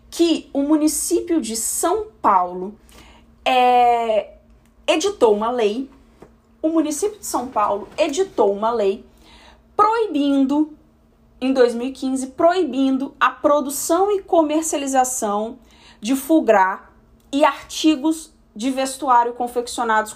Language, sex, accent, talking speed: Portuguese, female, Brazilian, 100 wpm